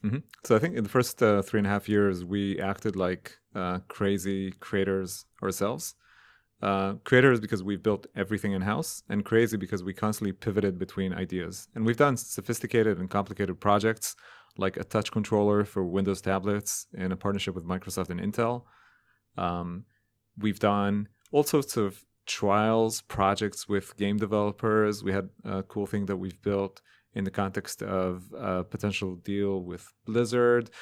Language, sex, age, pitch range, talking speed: English, male, 30-49, 95-110 Hz, 165 wpm